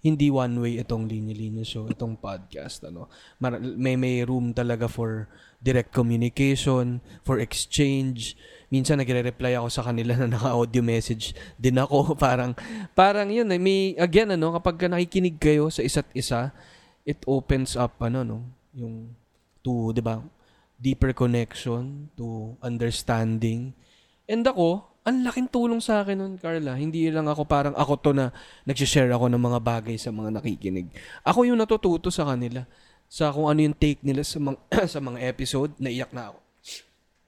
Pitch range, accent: 120-165 Hz, native